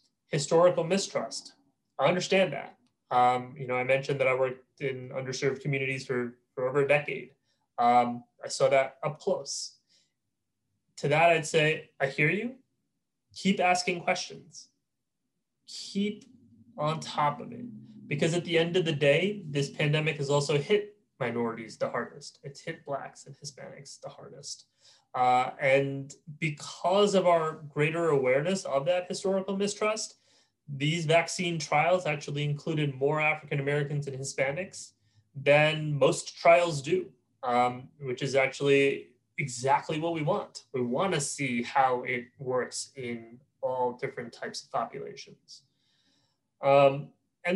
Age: 20-39